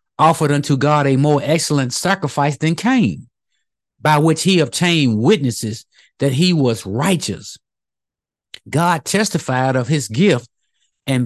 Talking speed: 130 wpm